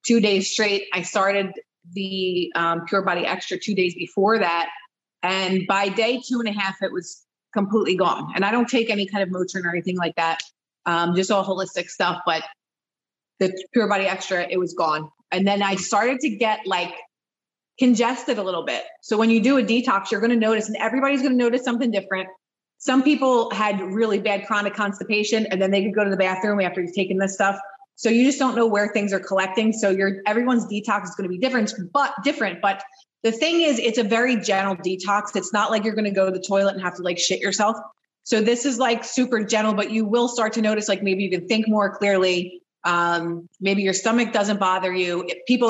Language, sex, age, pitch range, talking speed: English, female, 30-49, 185-225 Hz, 220 wpm